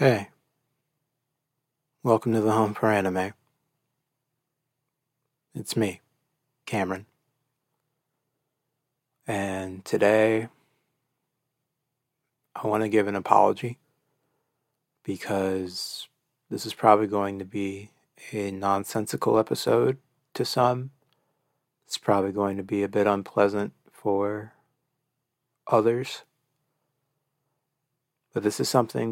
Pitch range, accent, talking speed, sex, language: 100-145 Hz, American, 90 wpm, male, English